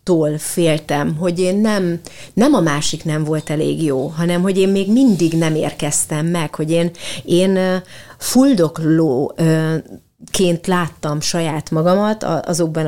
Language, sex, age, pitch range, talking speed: Hungarian, female, 30-49, 155-190 Hz, 130 wpm